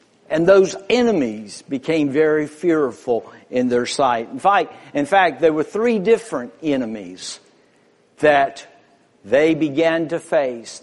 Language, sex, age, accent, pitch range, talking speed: English, male, 60-79, American, 155-220 Hz, 125 wpm